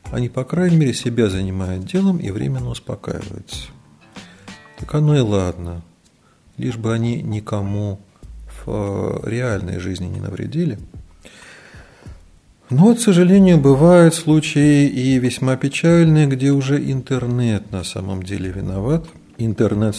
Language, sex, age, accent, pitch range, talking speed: Russian, male, 40-59, native, 95-145 Hz, 115 wpm